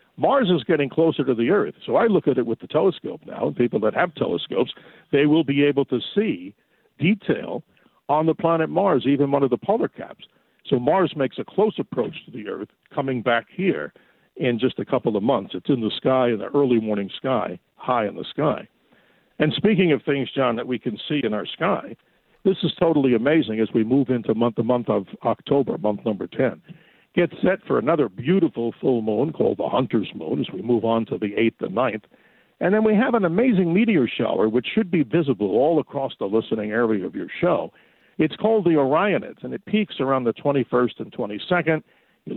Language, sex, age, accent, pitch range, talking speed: English, male, 50-69, American, 120-185 Hz, 210 wpm